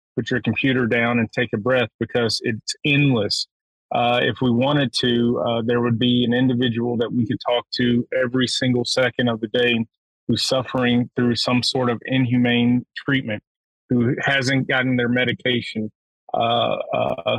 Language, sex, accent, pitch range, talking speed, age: English, male, American, 115-125 Hz, 160 wpm, 30-49